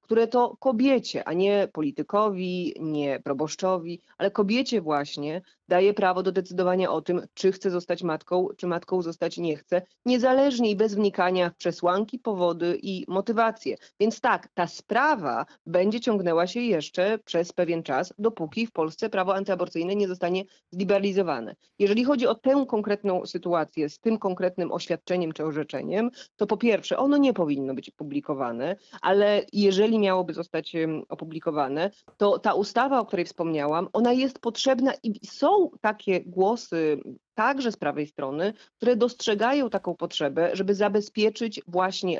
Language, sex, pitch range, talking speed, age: Polish, female, 170-220 Hz, 145 wpm, 30-49